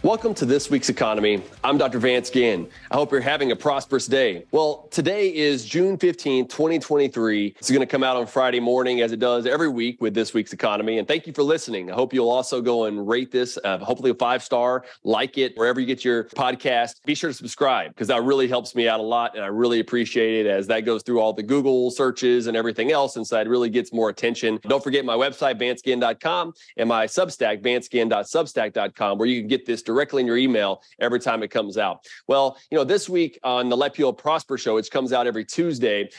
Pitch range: 115-140 Hz